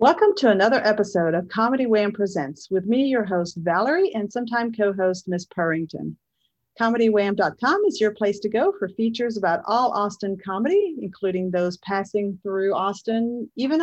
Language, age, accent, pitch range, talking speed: English, 40-59, American, 180-235 Hz, 155 wpm